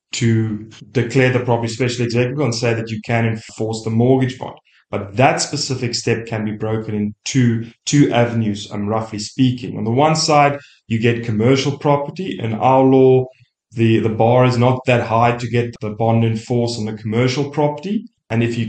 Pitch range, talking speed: 110-130 Hz, 185 wpm